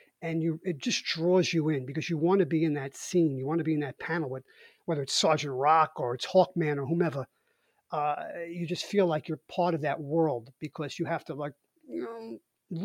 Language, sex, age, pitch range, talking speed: English, male, 30-49, 145-185 Hz, 230 wpm